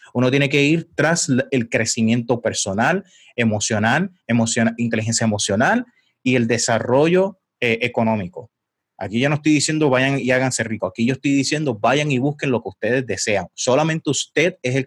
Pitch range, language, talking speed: 120-155 Hz, Spanish, 165 wpm